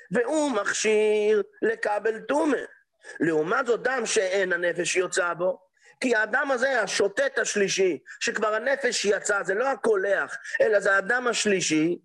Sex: male